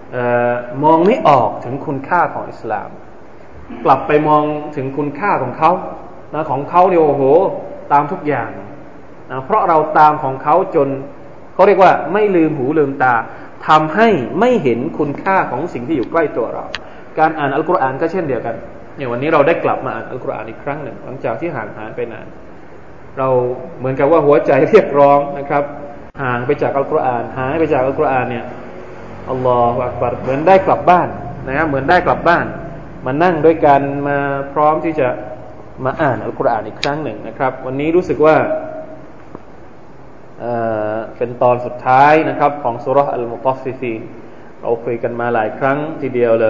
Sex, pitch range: male, 125-155 Hz